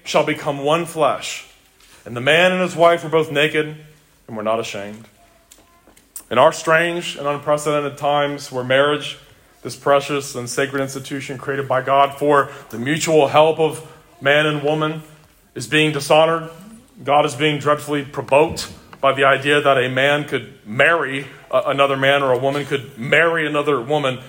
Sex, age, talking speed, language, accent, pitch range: male, 30-49, 165 wpm, English, American, 135-160 Hz